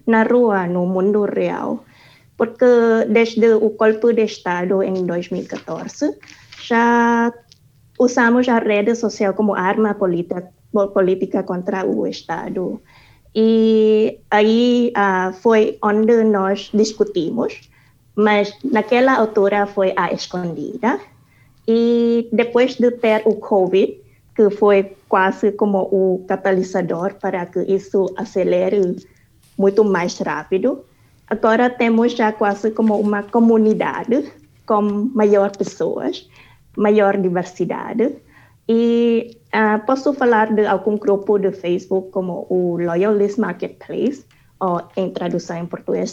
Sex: female